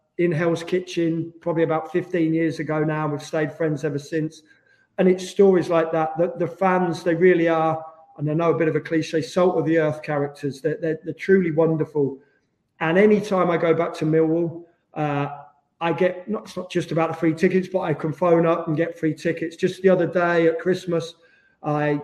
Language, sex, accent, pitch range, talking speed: English, male, British, 155-175 Hz, 210 wpm